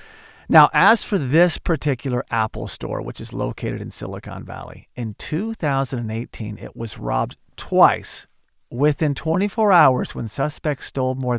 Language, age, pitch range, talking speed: English, 40-59, 125-165 Hz, 135 wpm